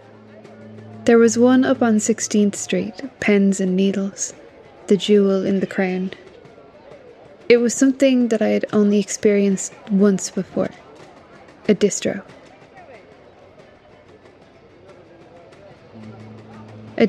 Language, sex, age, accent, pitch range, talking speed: English, female, 20-39, Irish, 185-215 Hz, 100 wpm